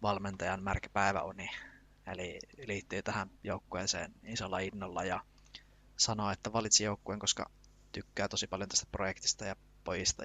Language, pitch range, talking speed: Finnish, 90-105 Hz, 125 wpm